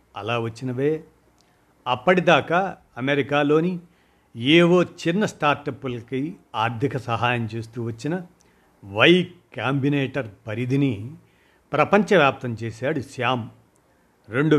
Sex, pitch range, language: male, 120-155 Hz, Telugu